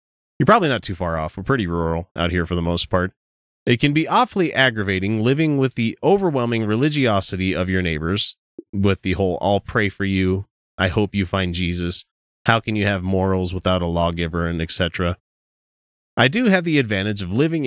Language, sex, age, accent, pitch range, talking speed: English, male, 30-49, American, 90-130 Hz, 195 wpm